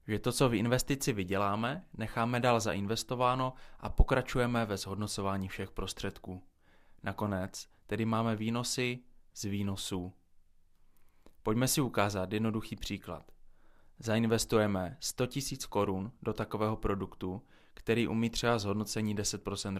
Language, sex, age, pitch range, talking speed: Czech, male, 20-39, 95-115 Hz, 115 wpm